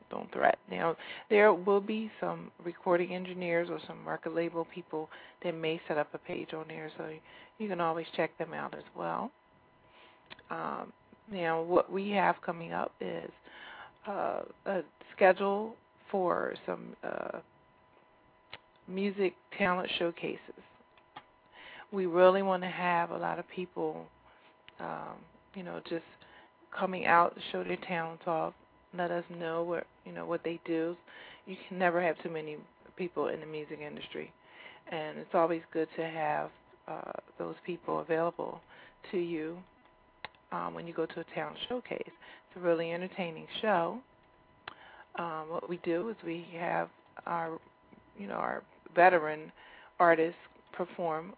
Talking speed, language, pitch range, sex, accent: 150 wpm, English, 165-180 Hz, female, American